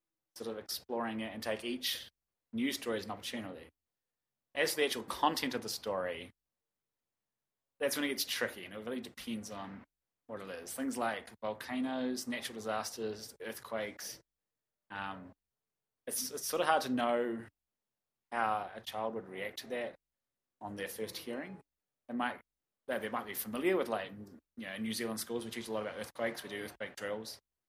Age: 20-39